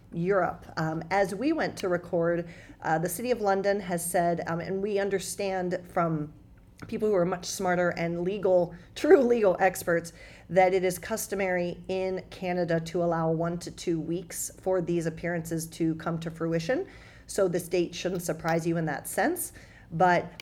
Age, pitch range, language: 40-59, 165-185 Hz, English